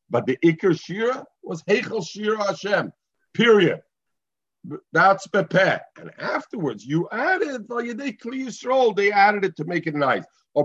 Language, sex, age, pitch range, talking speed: English, male, 50-69, 135-200 Hz, 145 wpm